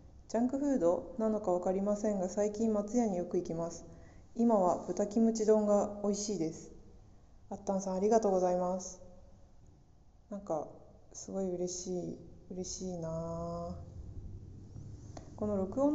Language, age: Japanese, 20-39